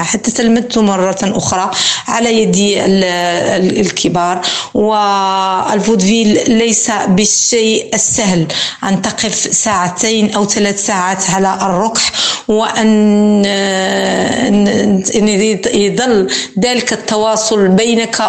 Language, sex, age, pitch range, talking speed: Arabic, female, 50-69, 195-220 Hz, 80 wpm